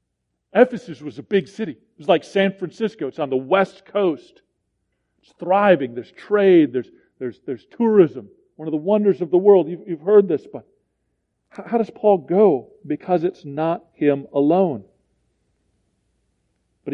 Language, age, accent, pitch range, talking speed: English, 40-59, American, 140-200 Hz, 155 wpm